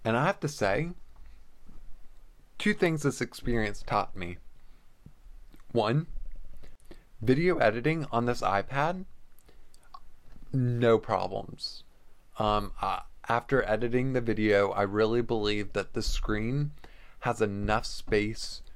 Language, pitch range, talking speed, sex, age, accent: English, 95-115 Hz, 105 wpm, male, 20-39, American